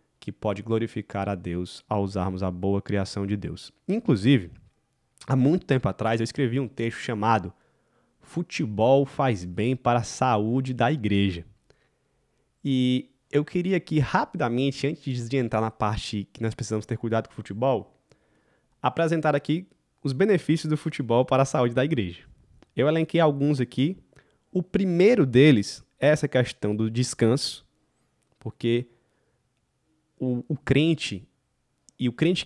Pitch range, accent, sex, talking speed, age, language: 110-145 Hz, Brazilian, male, 145 wpm, 20-39, Portuguese